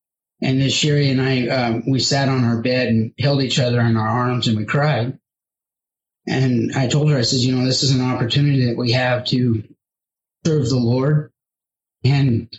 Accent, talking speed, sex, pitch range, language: American, 195 wpm, male, 120-145 Hz, English